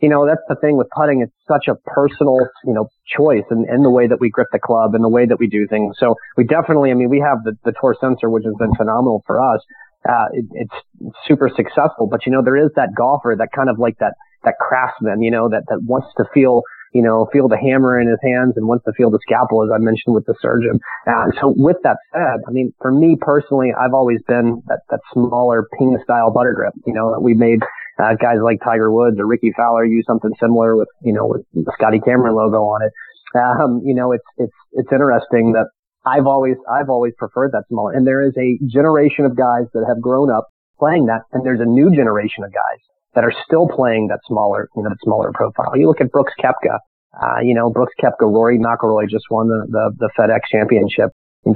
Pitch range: 115-130 Hz